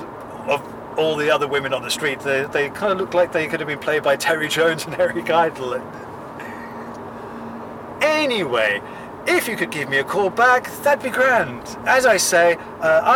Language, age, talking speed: English, 40-59, 185 wpm